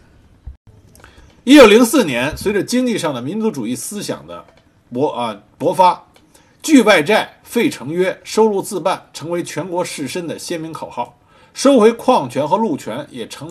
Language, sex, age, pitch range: Chinese, male, 50-69, 150-250 Hz